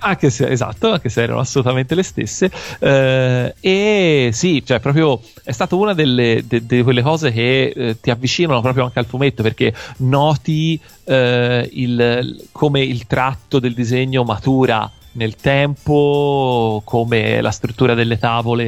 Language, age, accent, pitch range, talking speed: Italian, 30-49, native, 115-140 Hz, 150 wpm